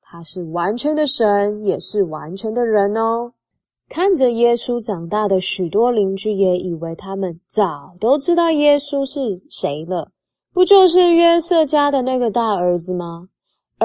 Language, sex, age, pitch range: Chinese, female, 20-39, 190-280 Hz